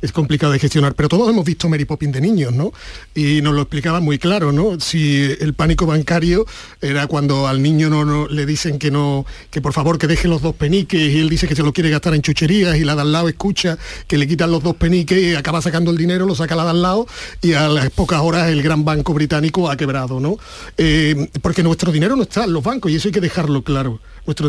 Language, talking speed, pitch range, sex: Spanish, 250 wpm, 150-180 Hz, male